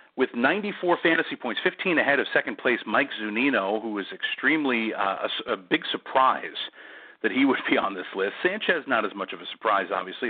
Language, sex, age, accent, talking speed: English, male, 50-69, American, 200 wpm